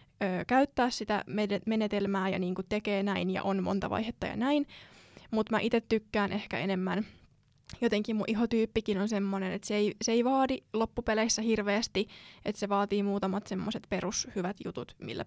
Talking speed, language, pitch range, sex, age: 155 wpm, Finnish, 195-235 Hz, female, 20-39